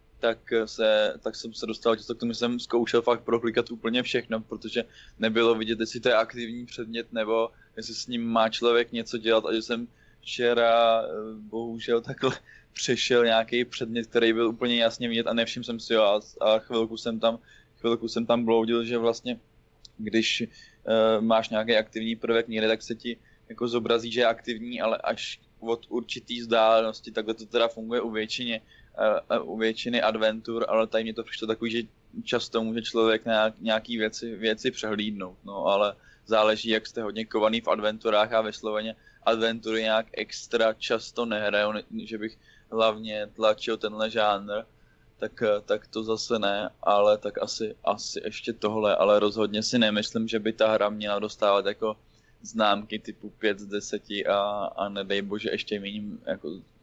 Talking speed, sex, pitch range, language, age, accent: 170 wpm, male, 110-115 Hz, Czech, 20-39, native